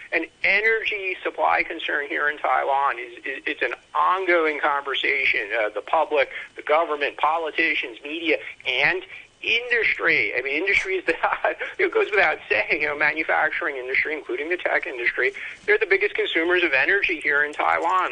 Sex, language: male, English